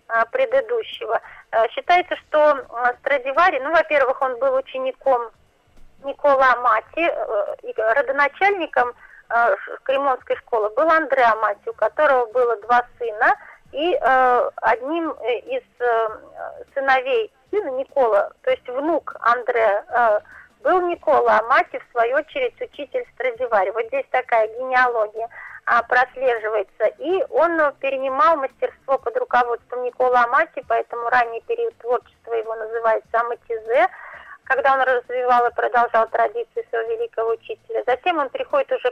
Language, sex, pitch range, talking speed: Russian, female, 240-360 Hz, 115 wpm